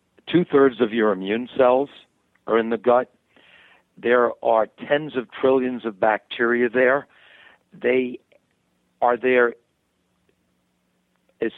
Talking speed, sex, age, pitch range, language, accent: 110 wpm, male, 60-79, 105-130 Hz, English, American